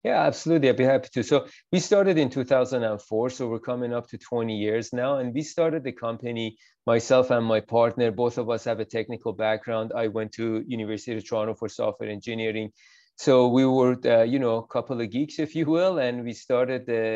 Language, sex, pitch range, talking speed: English, male, 115-135 Hz, 215 wpm